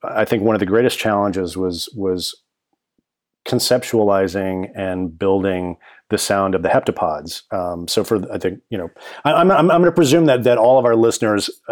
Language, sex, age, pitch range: English, male, 40-59, 95-115 Hz